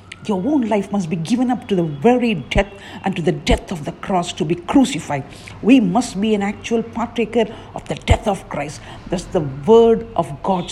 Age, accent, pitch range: 50-69, Indian, 165-230 Hz